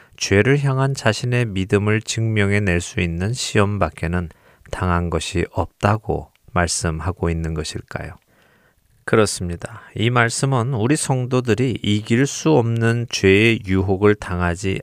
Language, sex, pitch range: Korean, male, 90-115 Hz